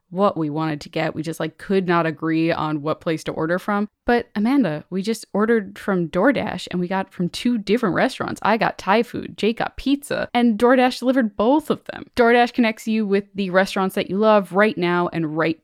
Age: 10-29